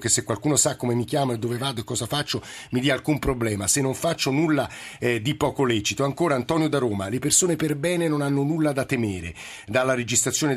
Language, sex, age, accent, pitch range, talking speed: Italian, male, 50-69, native, 120-150 Hz, 225 wpm